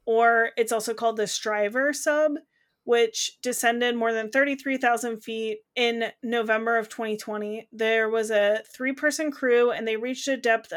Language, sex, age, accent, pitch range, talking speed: English, female, 30-49, American, 220-255 Hz, 150 wpm